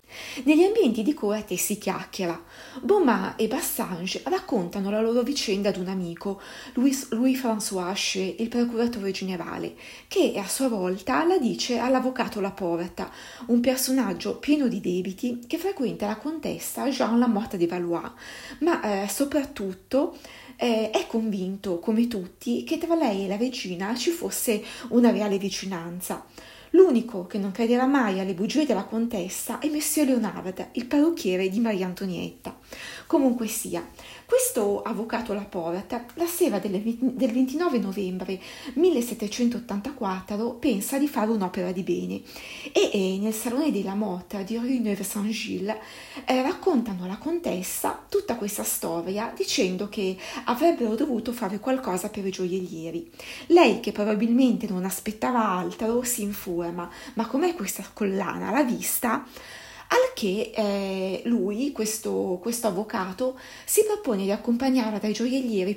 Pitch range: 195-255 Hz